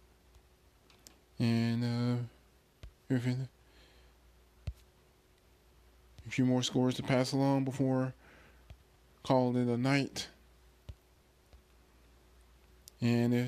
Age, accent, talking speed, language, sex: 20-39, American, 65 wpm, English, male